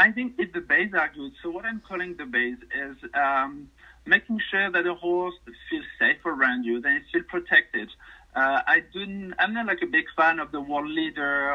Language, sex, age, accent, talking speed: English, male, 50-69, French, 215 wpm